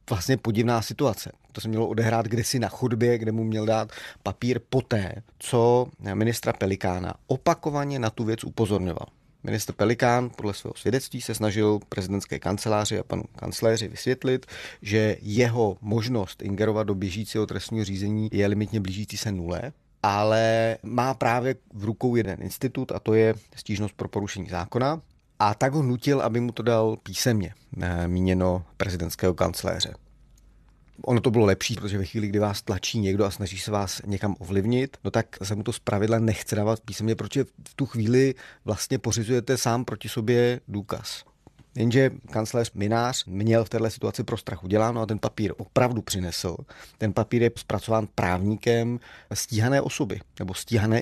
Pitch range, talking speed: 105-120 Hz, 160 wpm